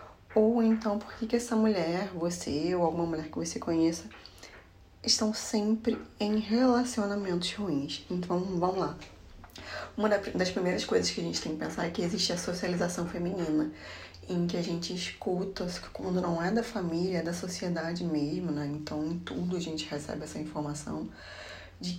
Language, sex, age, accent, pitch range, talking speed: Portuguese, female, 20-39, Brazilian, 160-195 Hz, 165 wpm